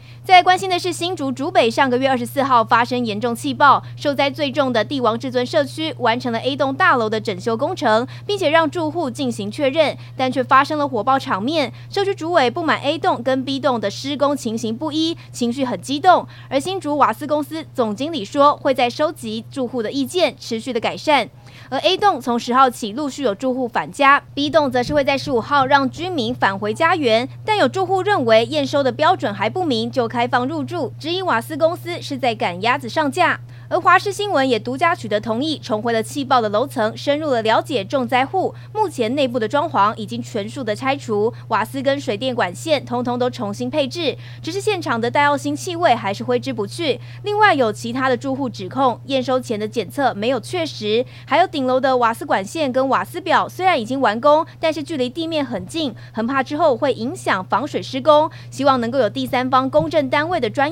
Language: Chinese